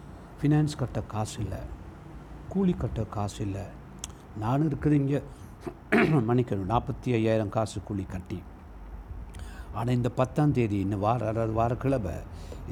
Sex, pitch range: male, 95-125 Hz